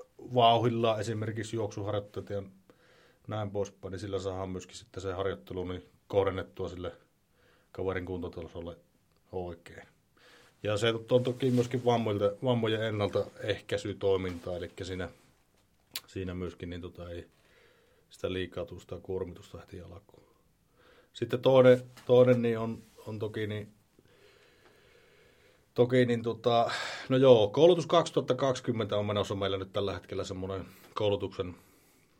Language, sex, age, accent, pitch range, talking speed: Finnish, male, 30-49, native, 95-120 Hz, 115 wpm